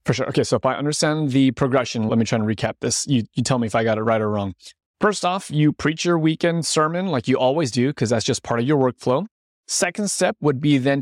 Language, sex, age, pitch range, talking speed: English, male, 30-49, 125-160 Hz, 265 wpm